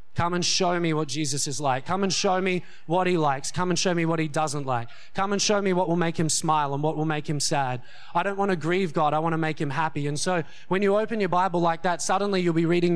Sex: male